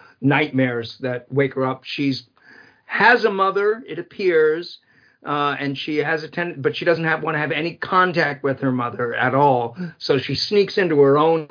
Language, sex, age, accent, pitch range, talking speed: English, male, 50-69, American, 130-155 Hz, 195 wpm